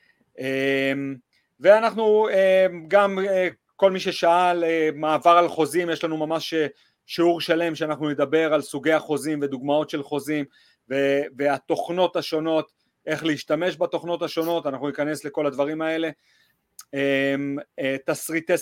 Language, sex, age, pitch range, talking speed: Hebrew, male, 30-49, 145-180 Hz, 105 wpm